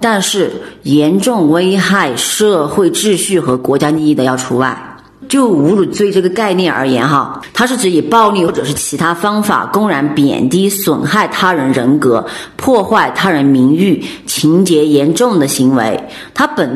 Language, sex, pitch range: Chinese, female, 145-210 Hz